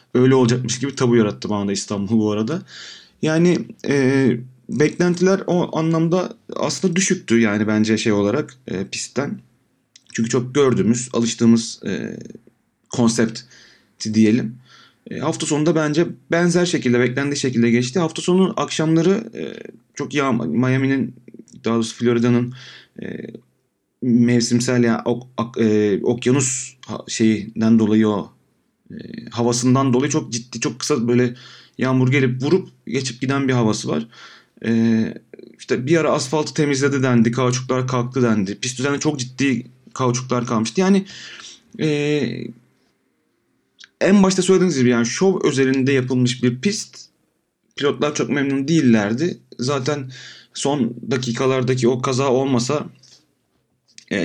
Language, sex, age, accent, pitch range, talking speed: Turkish, male, 40-59, native, 120-150 Hz, 125 wpm